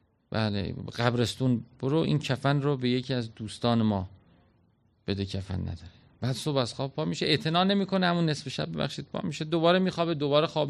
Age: 40-59